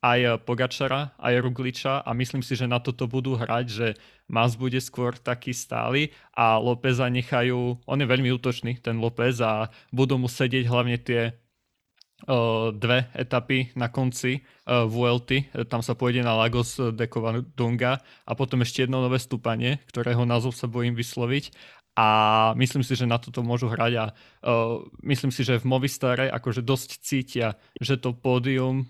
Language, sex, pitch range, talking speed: Slovak, male, 120-130 Hz, 165 wpm